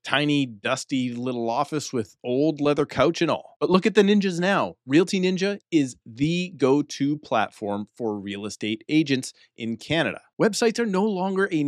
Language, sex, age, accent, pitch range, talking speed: English, male, 30-49, American, 125-175 Hz, 170 wpm